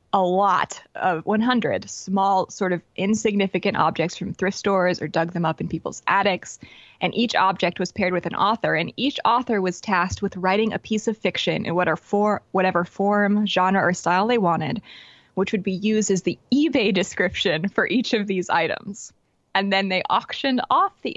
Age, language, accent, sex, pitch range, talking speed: 20-39, English, American, female, 175-210 Hz, 185 wpm